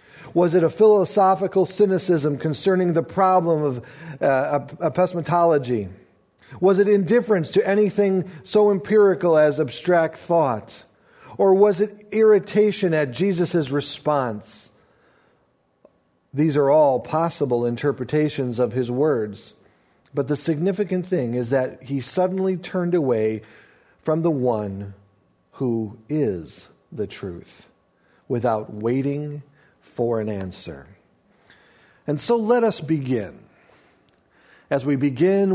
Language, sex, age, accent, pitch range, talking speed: English, male, 40-59, American, 130-190 Hz, 110 wpm